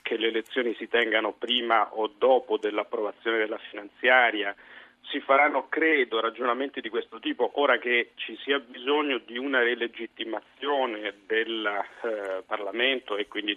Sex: male